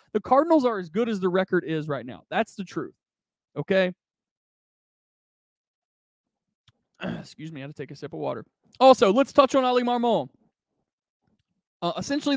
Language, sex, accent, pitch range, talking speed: English, male, American, 170-230 Hz, 160 wpm